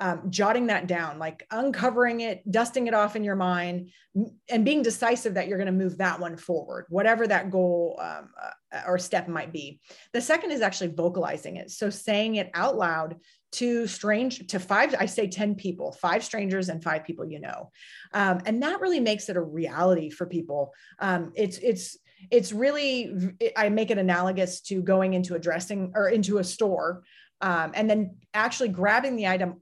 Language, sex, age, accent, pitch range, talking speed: English, female, 30-49, American, 175-215 Hz, 190 wpm